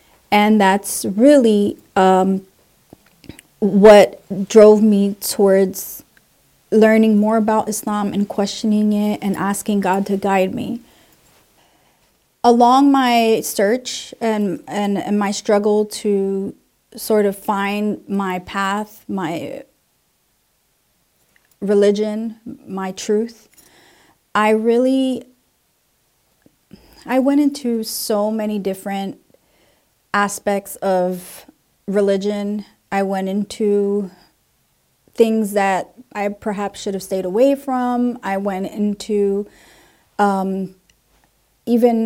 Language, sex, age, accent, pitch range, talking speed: English, female, 30-49, American, 195-225 Hz, 95 wpm